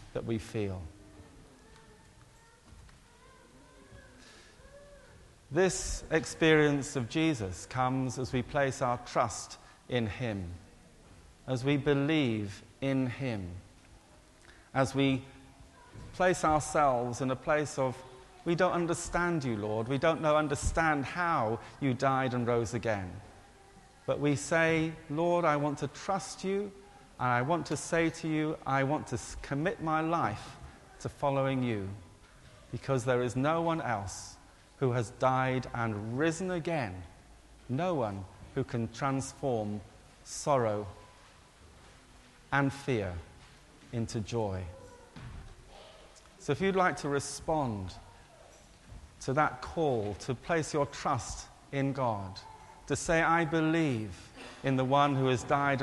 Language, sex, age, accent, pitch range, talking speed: English, male, 40-59, British, 110-150 Hz, 125 wpm